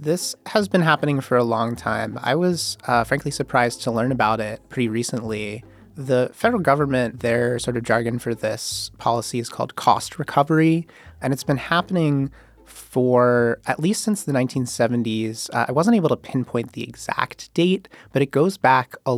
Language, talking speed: English, 180 wpm